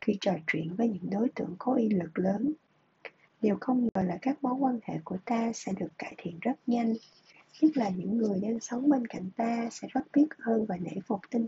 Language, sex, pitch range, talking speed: Vietnamese, female, 195-255 Hz, 230 wpm